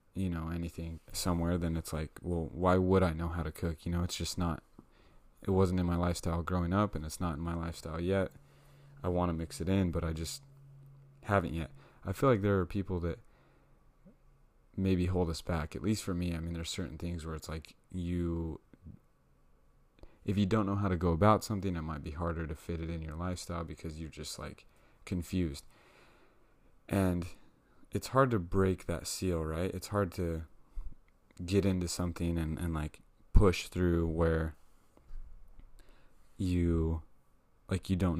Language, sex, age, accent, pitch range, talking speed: English, male, 30-49, American, 80-95 Hz, 185 wpm